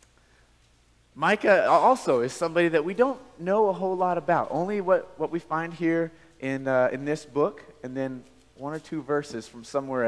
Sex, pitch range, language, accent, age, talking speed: male, 125-165 Hz, English, American, 30-49, 185 wpm